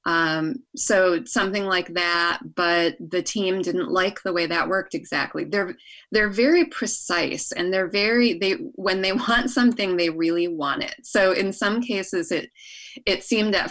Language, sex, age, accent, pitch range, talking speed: English, female, 20-39, American, 175-245 Hz, 170 wpm